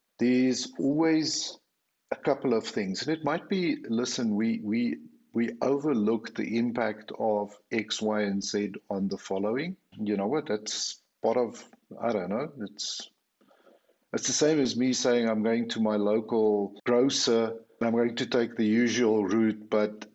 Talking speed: 165 wpm